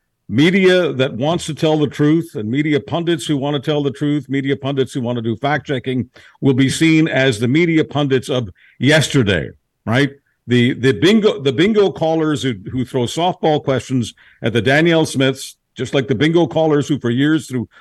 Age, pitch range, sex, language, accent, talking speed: 50-69, 120-155 Hz, male, English, American, 195 wpm